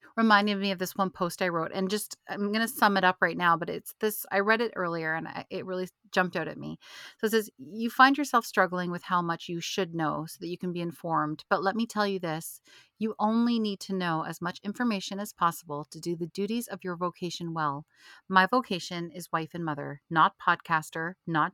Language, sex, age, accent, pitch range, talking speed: English, female, 30-49, American, 160-205 Hz, 235 wpm